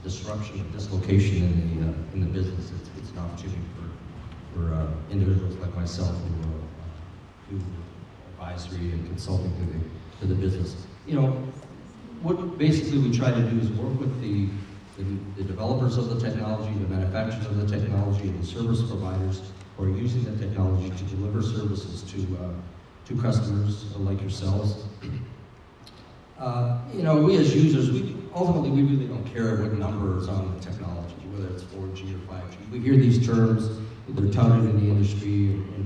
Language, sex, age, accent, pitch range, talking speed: English, male, 40-59, American, 95-115 Hz, 170 wpm